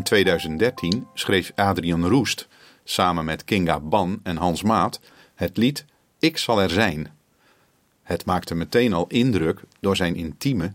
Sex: male